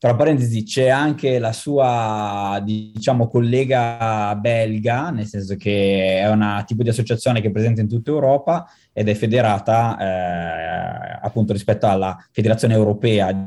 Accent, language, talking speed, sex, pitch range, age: native, Italian, 145 wpm, male, 105-120 Hz, 20-39